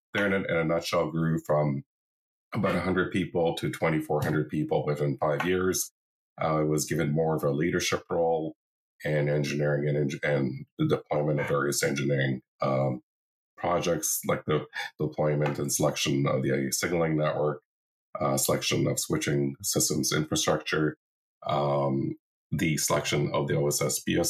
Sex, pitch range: male, 70-80 Hz